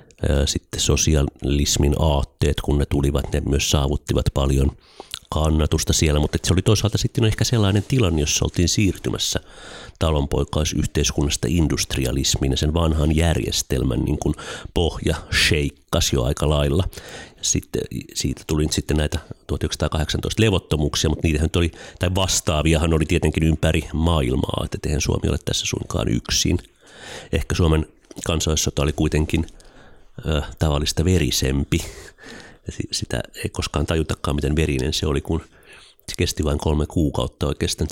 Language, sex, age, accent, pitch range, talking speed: Finnish, male, 30-49, native, 75-95 Hz, 130 wpm